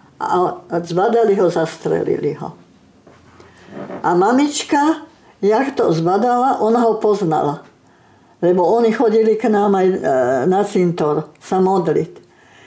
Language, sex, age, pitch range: Slovak, female, 60-79, 190-245 Hz